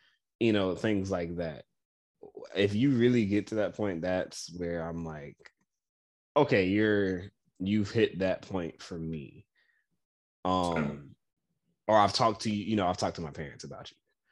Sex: male